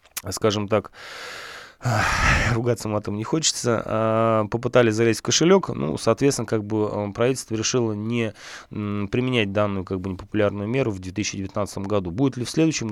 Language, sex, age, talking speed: Russian, male, 20-39, 140 wpm